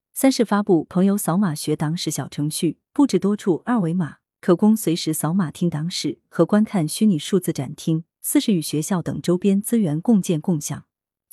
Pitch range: 155-215 Hz